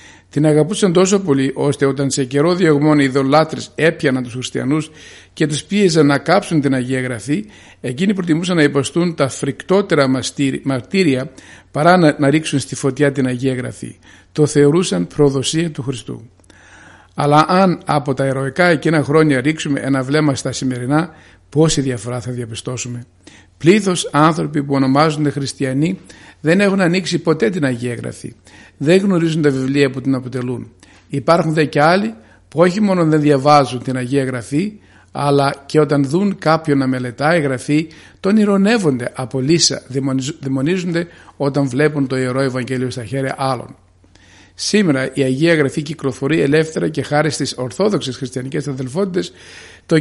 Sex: male